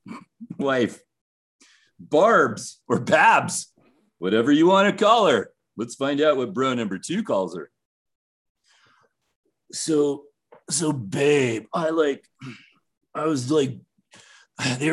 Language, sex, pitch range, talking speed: English, male, 130-185 Hz, 115 wpm